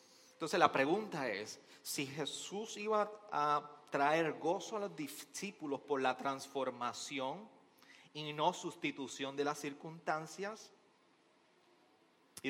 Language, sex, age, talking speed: Spanish, male, 30-49, 110 wpm